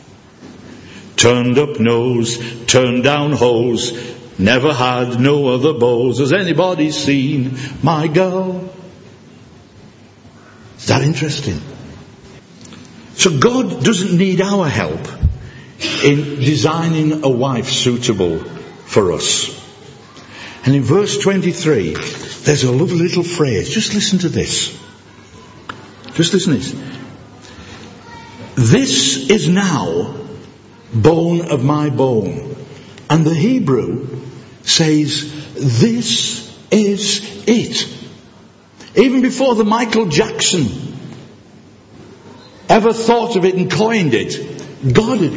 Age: 60-79